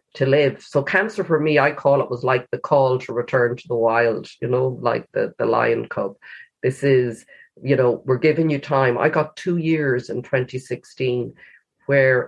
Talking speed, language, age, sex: 195 wpm, English, 30-49, female